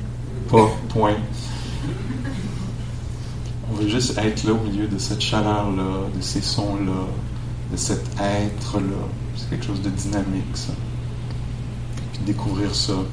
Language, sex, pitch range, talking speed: English, male, 110-120 Hz, 125 wpm